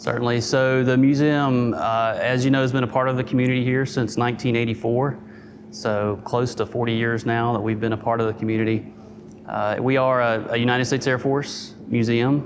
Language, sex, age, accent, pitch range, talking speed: English, male, 30-49, American, 110-125 Hz, 200 wpm